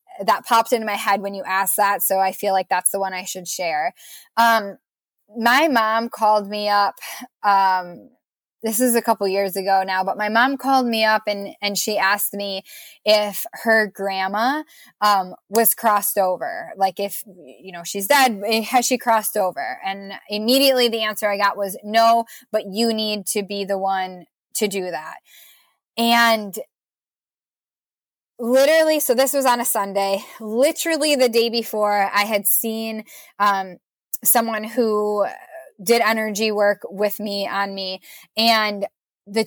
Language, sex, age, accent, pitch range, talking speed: English, female, 10-29, American, 200-245 Hz, 160 wpm